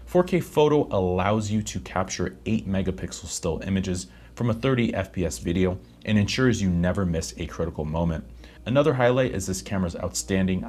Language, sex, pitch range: English, male, 85-115 Hz